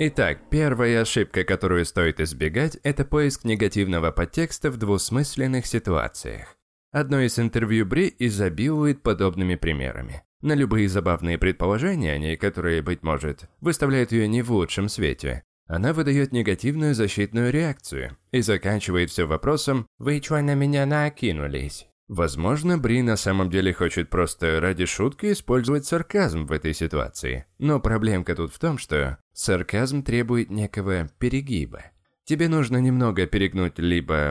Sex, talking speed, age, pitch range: male, 135 wpm, 20-39, 85-135 Hz